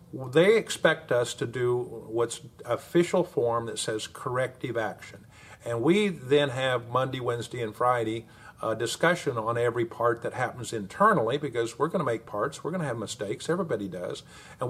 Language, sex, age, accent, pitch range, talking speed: English, male, 50-69, American, 120-155 Hz, 175 wpm